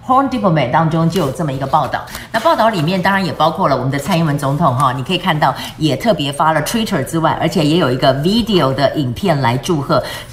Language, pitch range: Chinese, 150-190 Hz